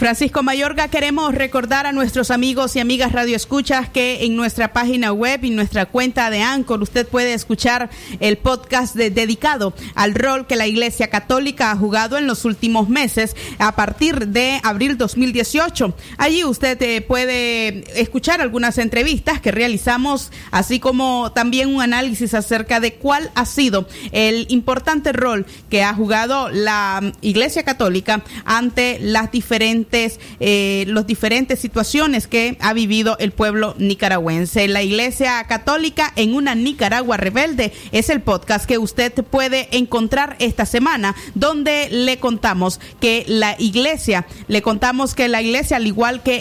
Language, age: Spanish, 30-49